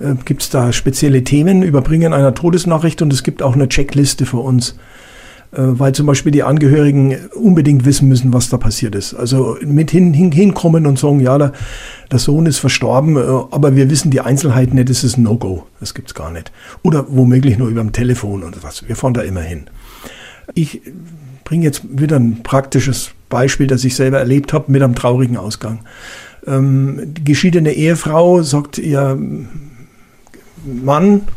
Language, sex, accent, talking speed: German, male, German, 170 wpm